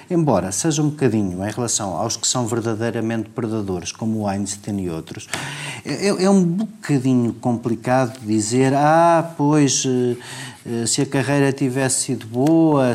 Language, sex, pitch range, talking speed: Portuguese, male, 120-150 Hz, 140 wpm